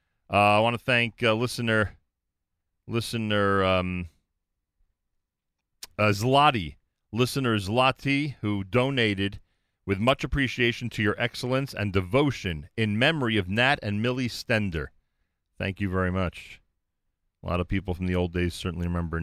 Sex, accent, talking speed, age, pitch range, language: male, American, 135 wpm, 40-59, 85-115 Hz, English